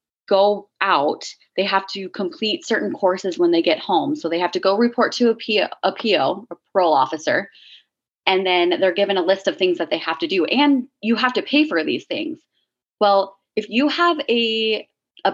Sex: female